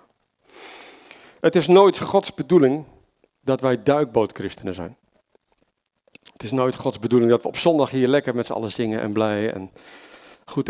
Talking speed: 155 wpm